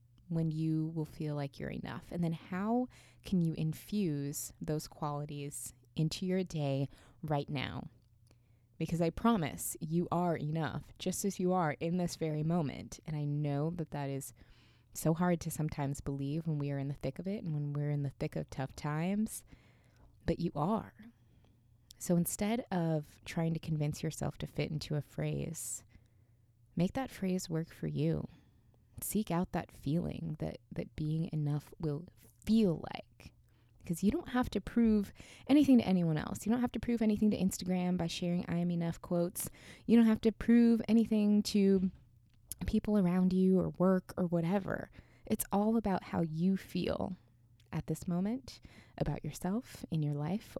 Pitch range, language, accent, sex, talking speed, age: 140-185 Hz, English, American, female, 175 wpm, 20-39